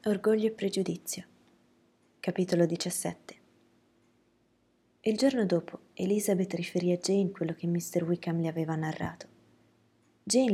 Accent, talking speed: native, 115 wpm